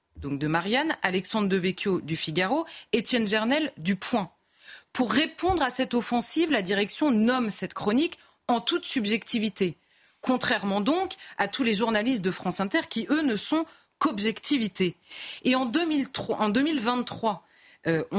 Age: 30-49